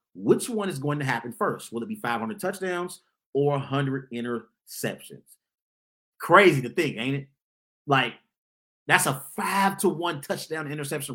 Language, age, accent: English, 30-49, American